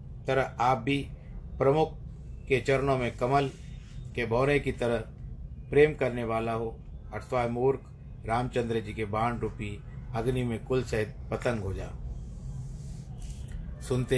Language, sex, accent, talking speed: Hindi, male, native, 130 wpm